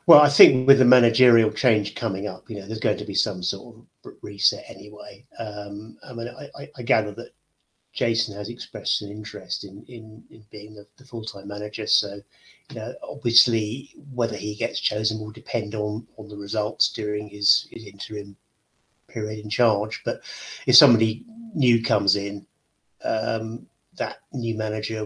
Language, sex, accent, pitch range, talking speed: English, male, British, 105-115 Hz, 170 wpm